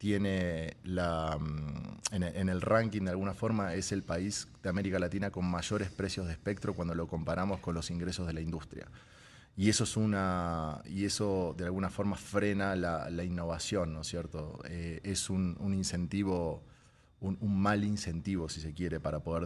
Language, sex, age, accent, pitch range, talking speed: Spanish, male, 30-49, Argentinian, 85-100 Hz, 180 wpm